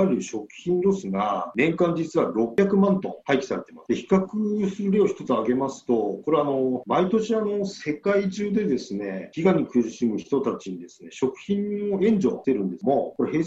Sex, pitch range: male, 135-205 Hz